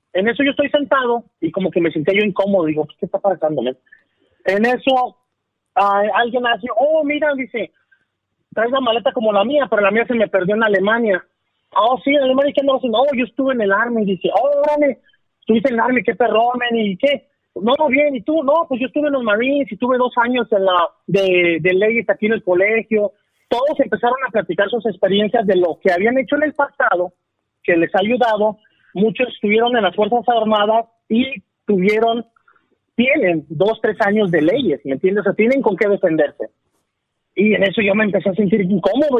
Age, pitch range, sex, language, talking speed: 30-49, 200-265 Hz, male, Spanish, 210 wpm